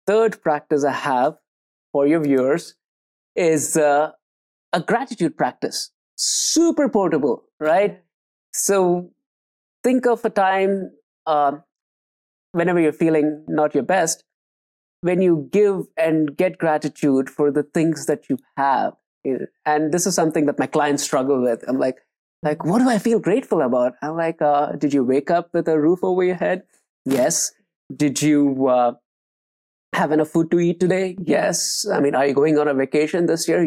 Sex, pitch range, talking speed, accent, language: male, 145-185 Hz, 160 wpm, Indian, English